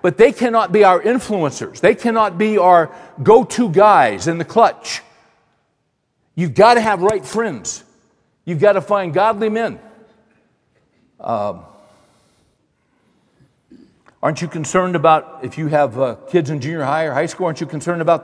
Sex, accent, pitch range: male, American, 150-195 Hz